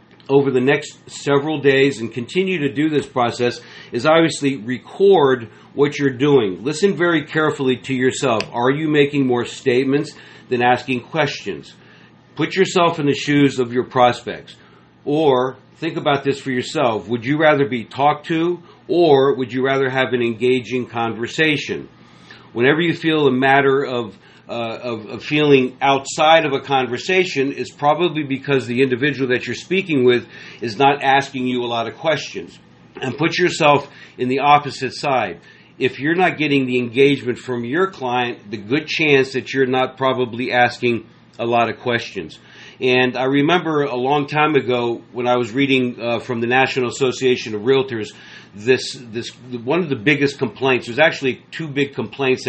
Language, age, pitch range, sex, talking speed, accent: English, 50-69, 125-145 Hz, male, 170 wpm, American